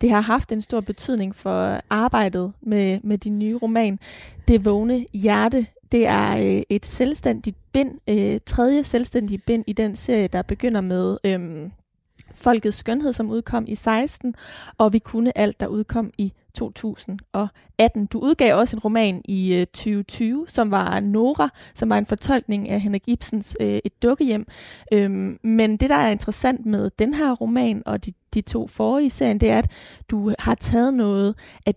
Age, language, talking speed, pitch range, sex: 20-39, Danish, 170 wpm, 200-235 Hz, female